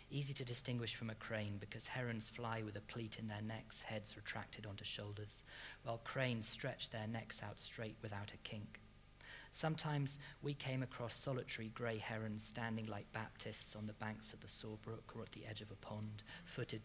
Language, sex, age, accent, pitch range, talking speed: English, male, 40-59, British, 105-120 Hz, 190 wpm